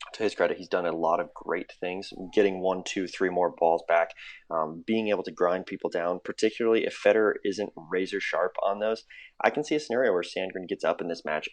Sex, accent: male, American